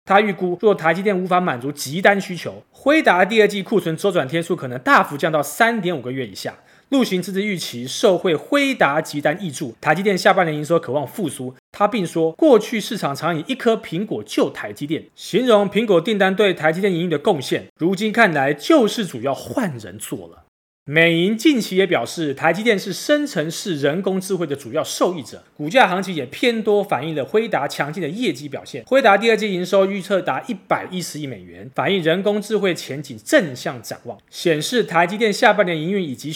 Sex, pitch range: male, 155-210 Hz